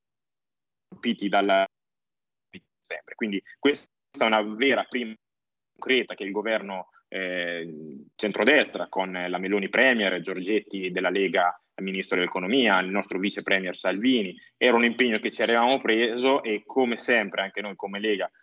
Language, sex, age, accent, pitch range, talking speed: Italian, male, 20-39, native, 100-125 Hz, 135 wpm